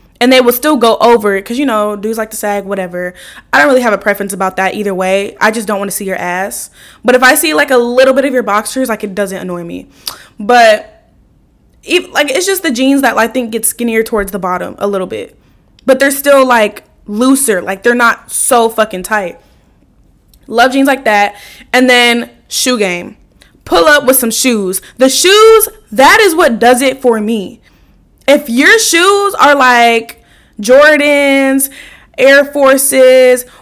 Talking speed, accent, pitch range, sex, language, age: 190 wpm, American, 215-280 Hz, female, English, 10-29